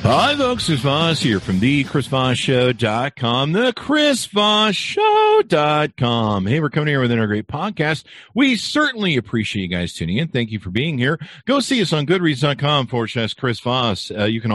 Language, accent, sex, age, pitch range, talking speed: English, American, male, 50-69, 110-170 Hz, 170 wpm